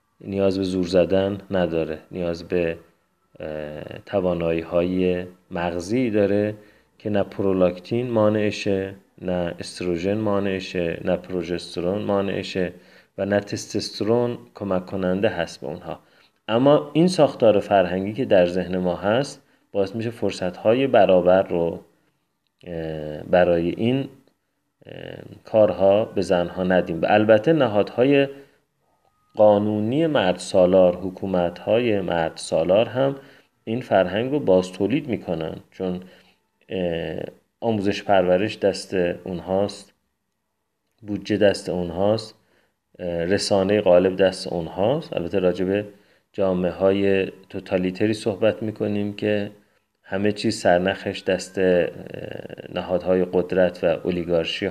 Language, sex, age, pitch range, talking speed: Persian, male, 30-49, 90-105 Hz, 100 wpm